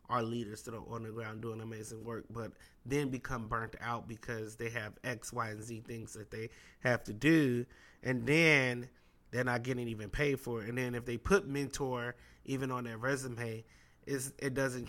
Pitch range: 115-140 Hz